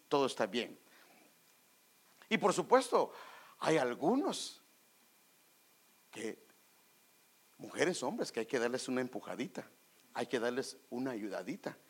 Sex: male